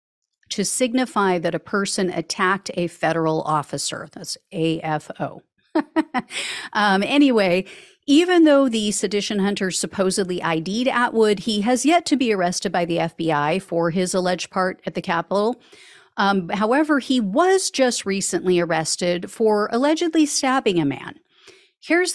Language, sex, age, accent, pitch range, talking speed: English, female, 50-69, American, 175-255 Hz, 135 wpm